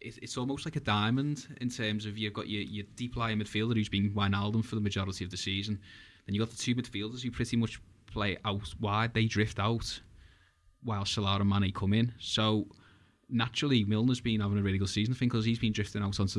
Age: 20-39